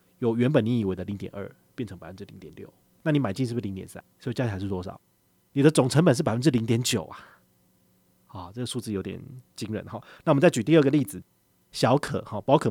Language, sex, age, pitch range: Chinese, male, 30-49, 100-145 Hz